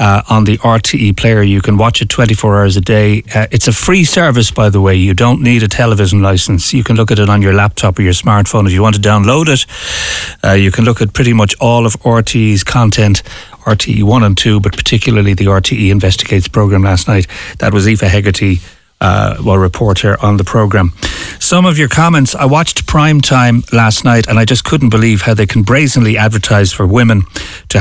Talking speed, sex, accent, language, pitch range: 215 wpm, male, Irish, English, 100-125 Hz